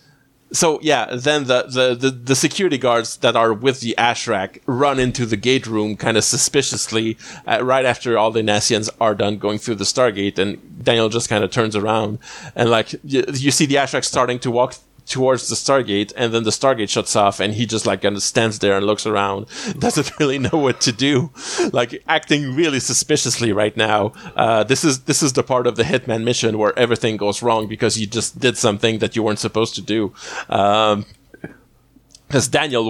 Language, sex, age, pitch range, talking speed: English, male, 30-49, 110-130 Hz, 205 wpm